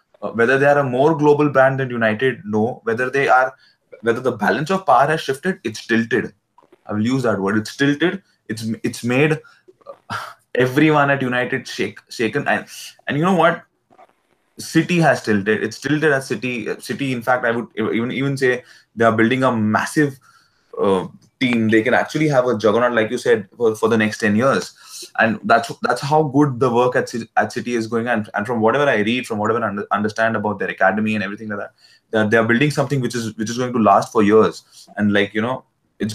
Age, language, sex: 20-39, English, male